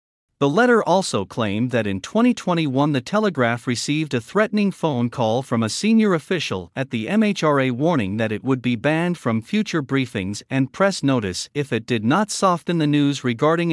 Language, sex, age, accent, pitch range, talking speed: English, male, 50-69, American, 115-180 Hz, 180 wpm